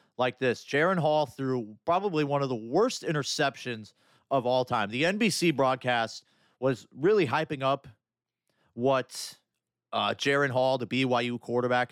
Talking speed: 140 wpm